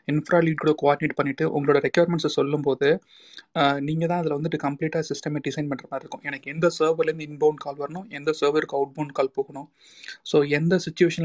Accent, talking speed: native, 175 wpm